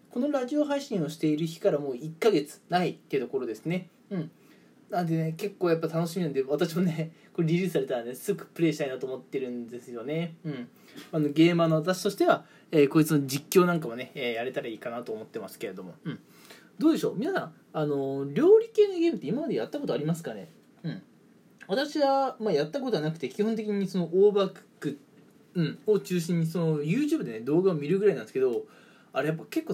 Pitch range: 155-225 Hz